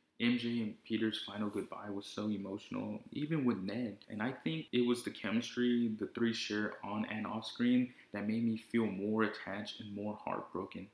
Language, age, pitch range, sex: English, 20-39, 105-125 Hz, male